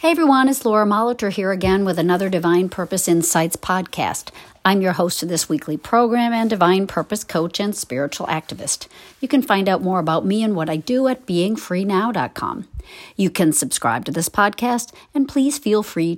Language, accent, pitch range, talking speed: English, American, 150-210 Hz, 185 wpm